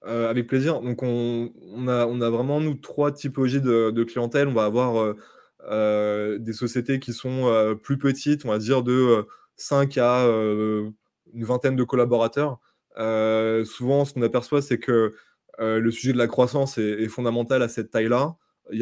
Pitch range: 110-125 Hz